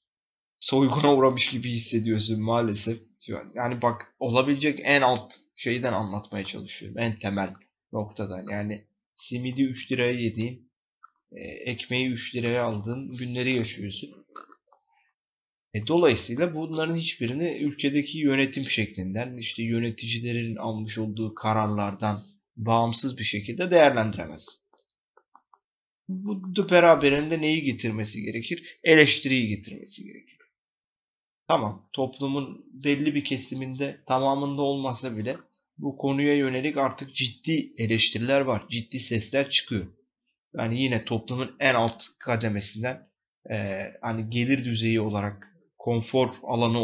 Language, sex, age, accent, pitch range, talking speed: Turkish, male, 30-49, native, 110-140 Hz, 105 wpm